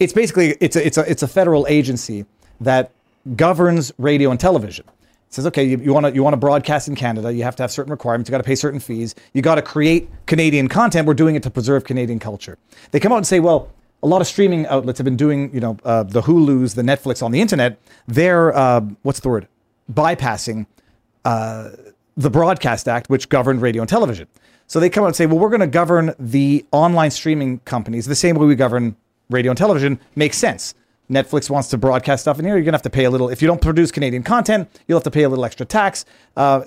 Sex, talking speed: male, 240 wpm